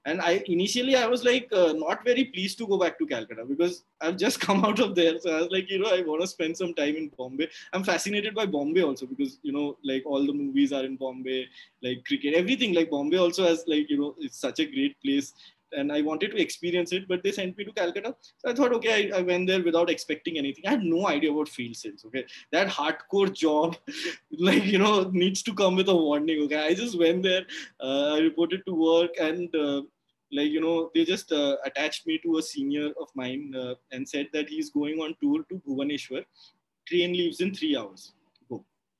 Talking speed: 230 wpm